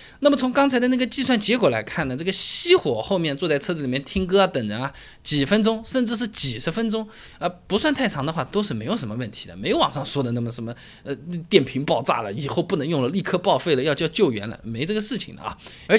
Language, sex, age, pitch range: Chinese, male, 20-39, 130-215 Hz